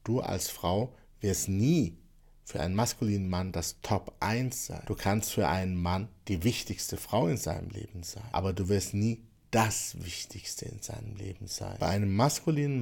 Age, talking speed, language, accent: 60-79, 180 wpm, German, German